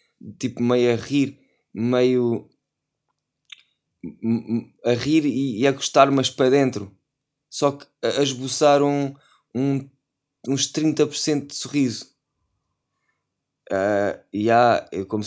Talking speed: 115 wpm